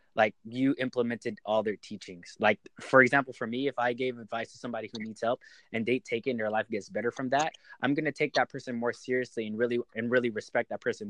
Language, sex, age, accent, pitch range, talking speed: English, male, 20-39, American, 115-150 Hz, 245 wpm